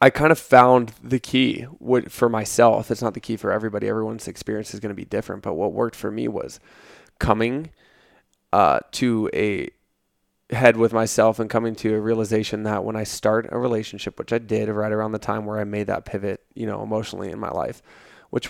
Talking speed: 210 wpm